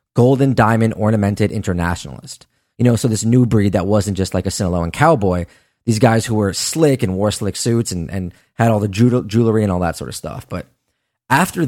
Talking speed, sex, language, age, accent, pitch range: 205 wpm, male, English, 20-39, American, 105-130 Hz